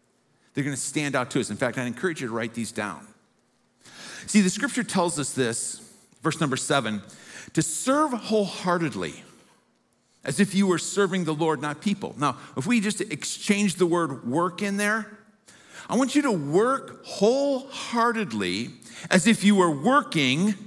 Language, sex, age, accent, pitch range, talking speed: English, male, 50-69, American, 135-205 Hz, 165 wpm